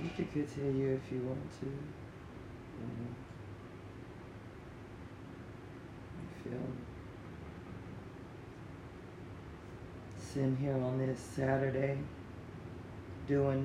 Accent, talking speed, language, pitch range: American, 80 wpm, English, 95-135 Hz